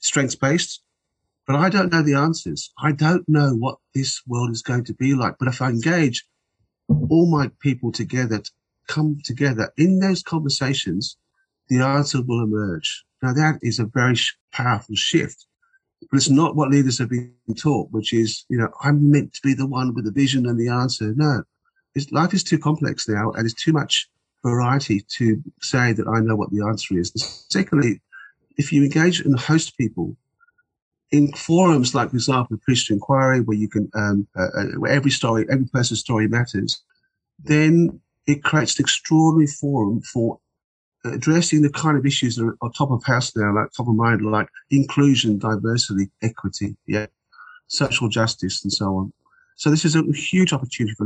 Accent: British